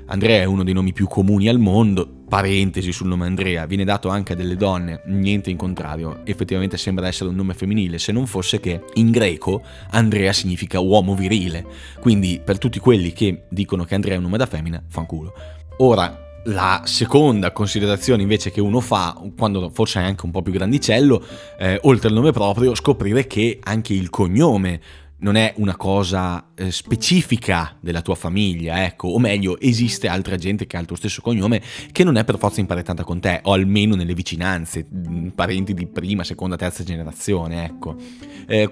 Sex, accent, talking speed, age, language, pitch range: male, native, 185 wpm, 20-39, Italian, 90-115 Hz